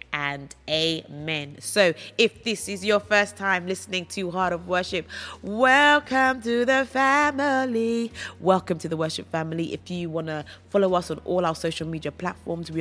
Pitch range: 155-185 Hz